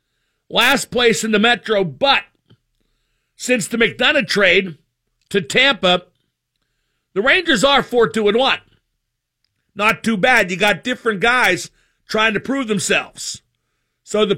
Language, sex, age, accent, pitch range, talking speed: English, male, 50-69, American, 190-245 Hz, 120 wpm